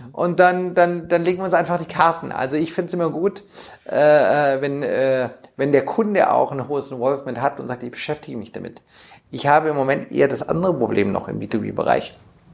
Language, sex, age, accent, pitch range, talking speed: German, male, 40-59, German, 130-165 Hz, 210 wpm